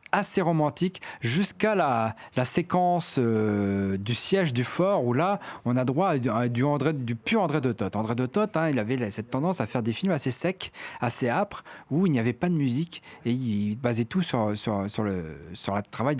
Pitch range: 110-155 Hz